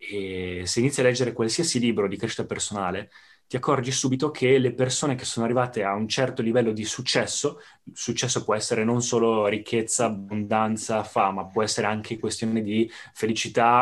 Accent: native